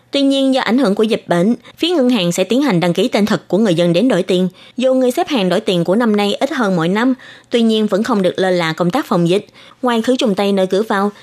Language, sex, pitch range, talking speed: Vietnamese, female, 180-250 Hz, 295 wpm